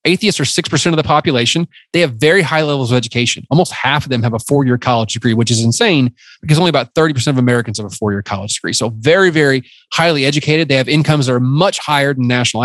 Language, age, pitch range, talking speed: English, 30-49, 120-160 Hz, 240 wpm